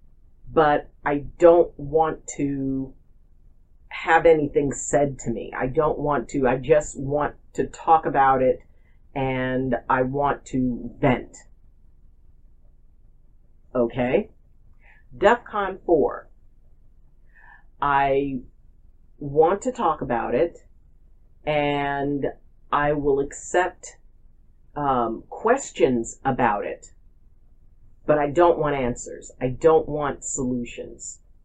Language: English